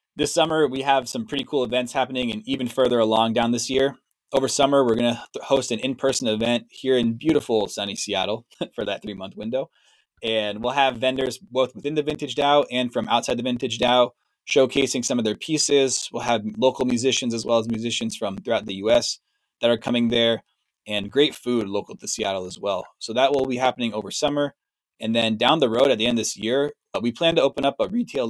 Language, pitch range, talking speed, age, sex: English, 115-140 Hz, 220 wpm, 20-39, male